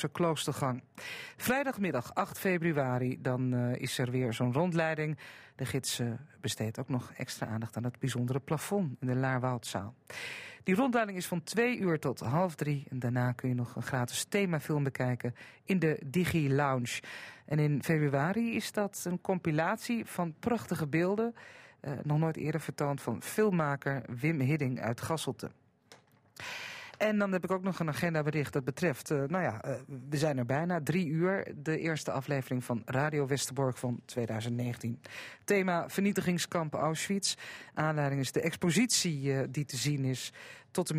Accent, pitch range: Dutch, 125-170 Hz